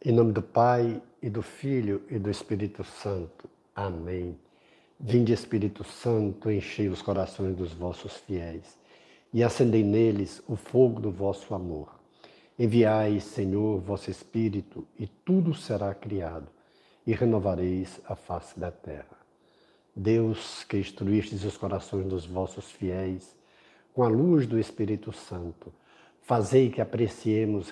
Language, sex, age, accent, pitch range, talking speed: Portuguese, male, 60-79, Brazilian, 95-120 Hz, 130 wpm